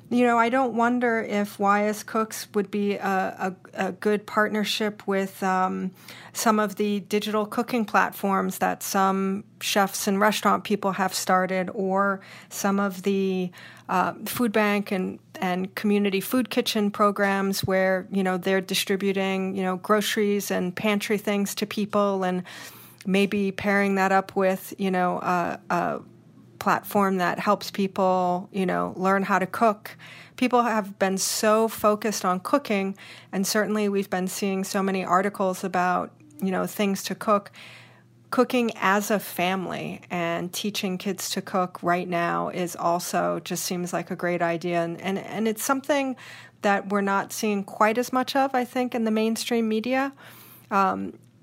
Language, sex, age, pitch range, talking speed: English, female, 40-59, 185-215 Hz, 160 wpm